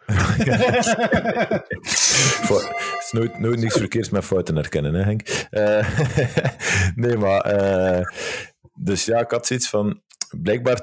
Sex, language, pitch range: male, Dutch, 90-115 Hz